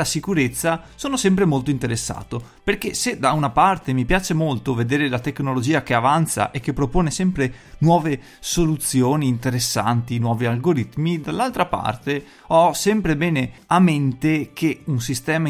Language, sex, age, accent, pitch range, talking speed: Italian, male, 30-49, native, 120-165 Hz, 145 wpm